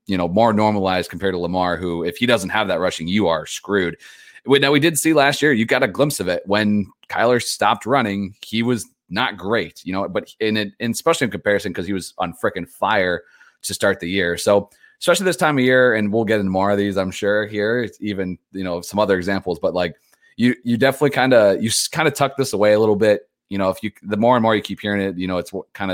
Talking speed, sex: 255 wpm, male